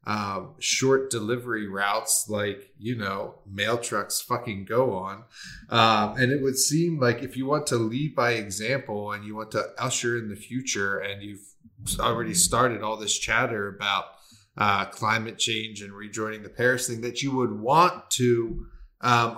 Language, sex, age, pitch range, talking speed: English, male, 30-49, 100-120 Hz, 170 wpm